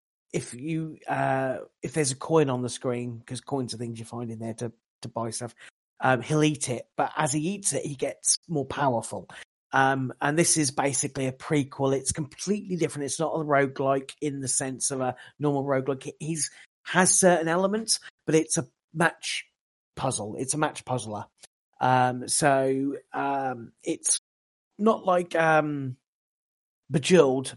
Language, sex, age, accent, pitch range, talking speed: English, male, 40-59, British, 130-160 Hz, 170 wpm